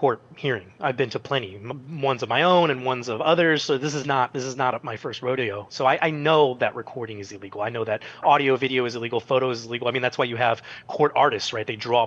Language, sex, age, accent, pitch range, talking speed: English, male, 30-49, American, 120-165 Hz, 275 wpm